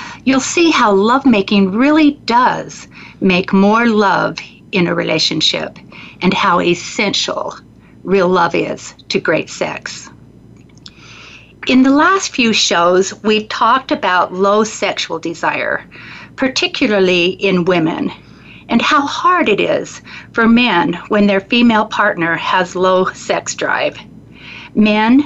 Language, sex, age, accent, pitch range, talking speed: English, female, 50-69, American, 185-260 Hz, 120 wpm